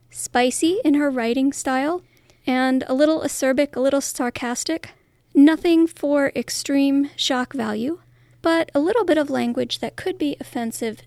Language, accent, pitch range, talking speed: English, American, 220-280 Hz, 145 wpm